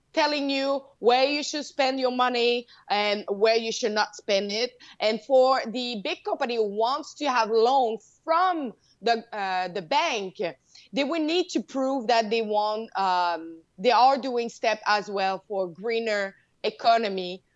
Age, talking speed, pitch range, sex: 20-39, 165 wpm, 195-255 Hz, female